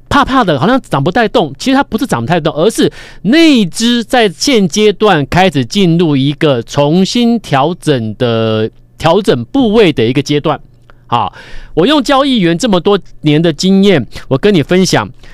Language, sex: Chinese, male